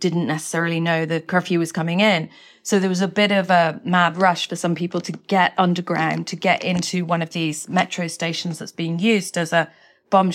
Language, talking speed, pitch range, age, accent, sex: English, 215 wpm, 165-185 Hz, 30-49, British, female